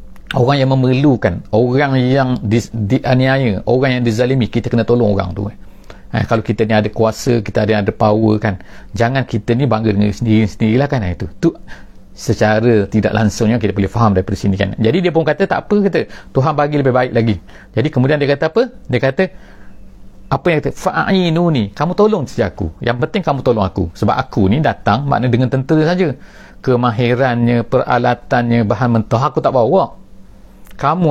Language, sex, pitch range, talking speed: English, male, 110-145 Hz, 175 wpm